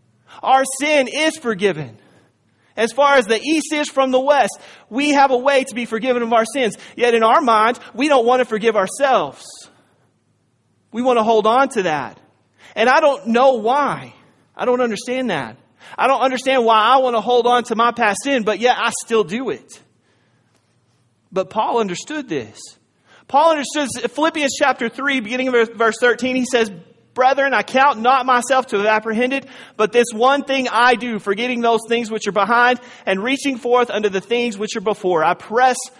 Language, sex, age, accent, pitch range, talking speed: English, male, 30-49, American, 210-260 Hz, 190 wpm